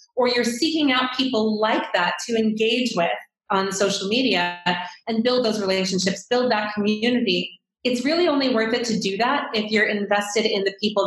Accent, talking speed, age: American, 185 wpm, 30-49